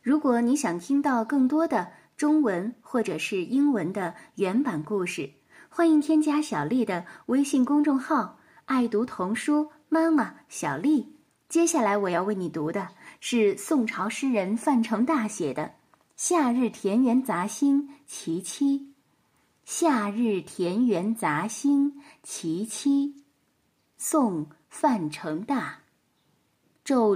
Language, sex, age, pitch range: Chinese, female, 10-29, 205-285 Hz